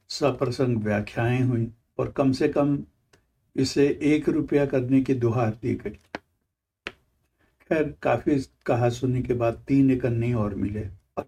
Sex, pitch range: male, 115-140 Hz